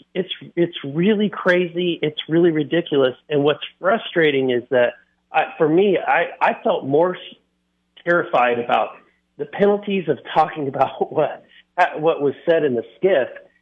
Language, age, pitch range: English, 40-59, 120-170 Hz